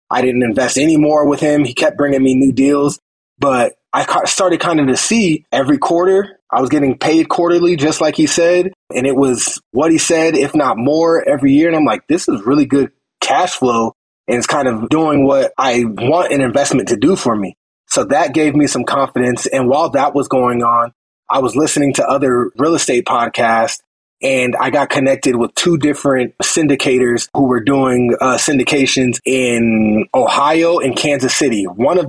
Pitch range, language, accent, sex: 125-155 Hz, English, American, male